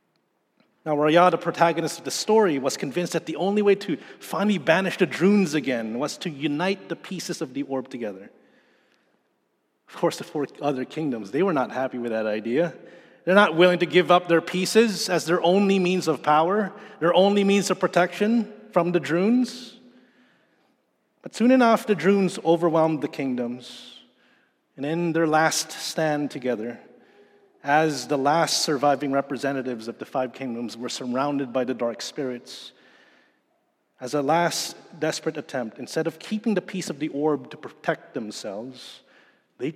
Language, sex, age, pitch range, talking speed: English, male, 30-49, 135-180 Hz, 165 wpm